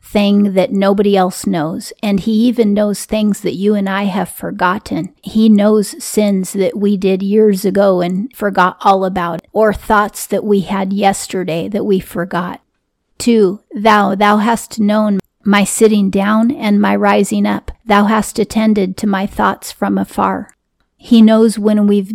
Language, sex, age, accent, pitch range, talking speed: English, female, 40-59, American, 195-215 Hz, 165 wpm